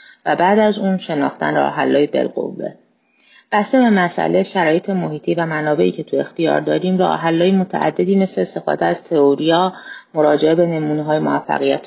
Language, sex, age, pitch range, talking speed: English, female, 30-49, 150-200 Hz, 150 wpm